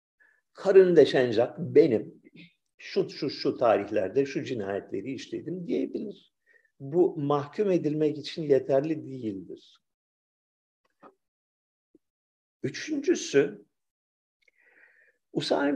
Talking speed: 70 wpm